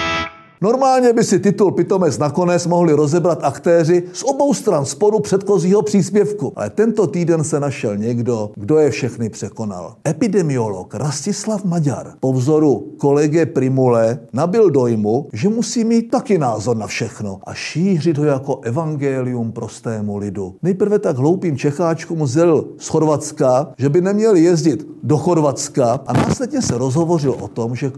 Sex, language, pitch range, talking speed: male, Czech, 125-175 Hz, 145 wpm